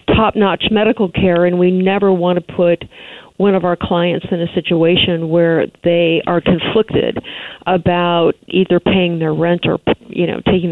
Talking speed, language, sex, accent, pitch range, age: 160 wpm, English, female, American, 170-205 Hz, 50-69